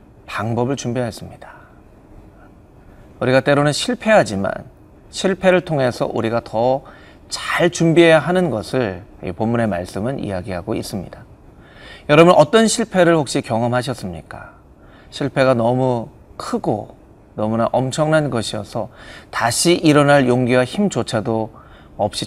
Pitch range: 110-155 Hz